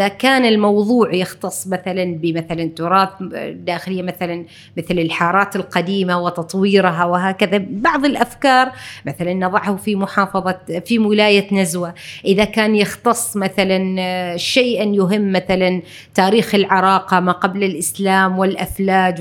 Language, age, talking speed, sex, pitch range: Arabic, 30-49, 110 wpm, female, 180-220 Hz